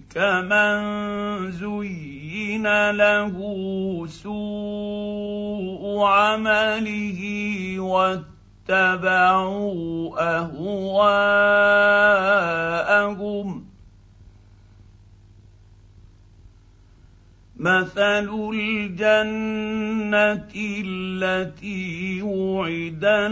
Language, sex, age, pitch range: Arabic, male, 50-69, 170-205 Hz